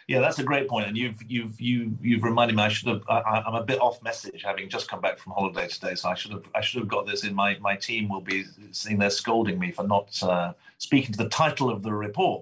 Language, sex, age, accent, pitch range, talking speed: English, male, 40-59, British, 105-135 Hz, 275 wpm